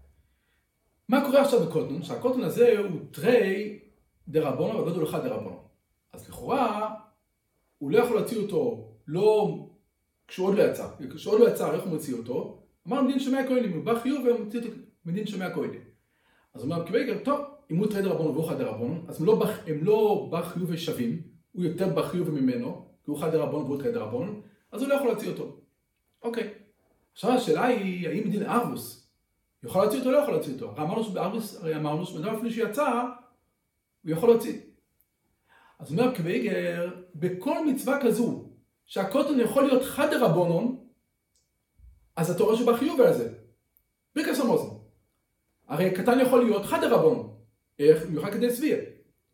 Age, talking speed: 40-59, 60 wpm